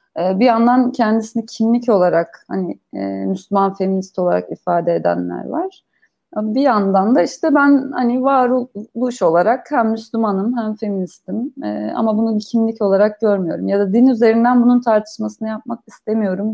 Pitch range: 190-245 Hz